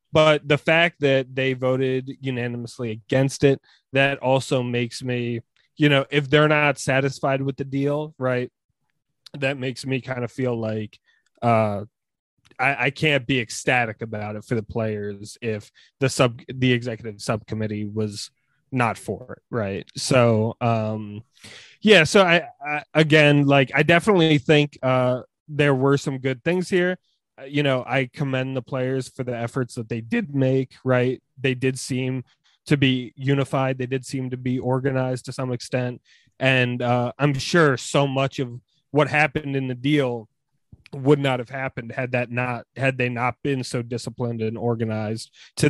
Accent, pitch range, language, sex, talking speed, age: American, 120-140 Hz, English, male, 165 wpm, 20-39